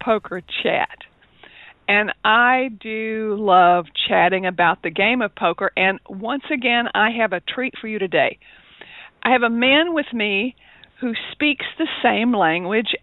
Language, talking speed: English, 150 wpm